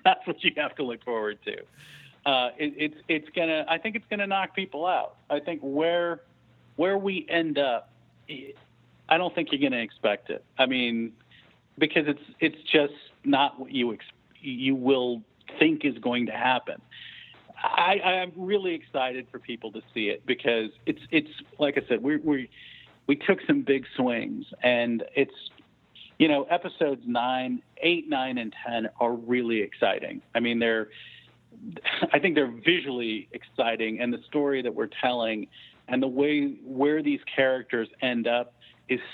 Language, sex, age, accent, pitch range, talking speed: English, male, 50-69, American, 120-155 Hz, 165 wpm